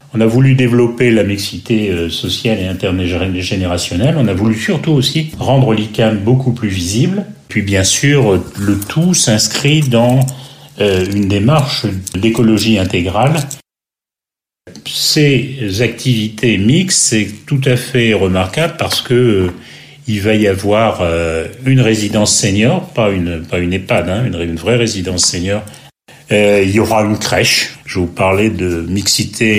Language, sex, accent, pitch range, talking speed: French, male, French, 95-130 Hz, 135 wpm